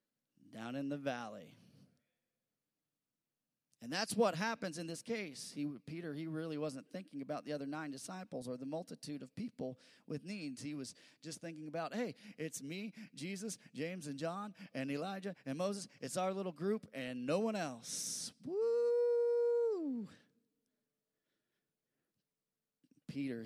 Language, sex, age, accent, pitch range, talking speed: English, male, 30-49, American, 145-205 Hz, 140 wpm